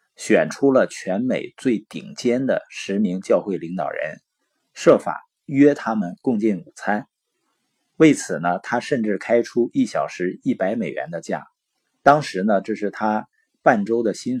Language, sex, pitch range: Chinese, male, 105-150 Hz